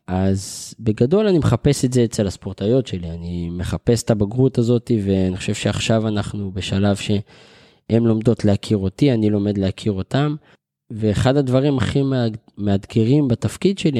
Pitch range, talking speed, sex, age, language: 95-120 Hz, 145 wpm, male, 20-39, Hebrew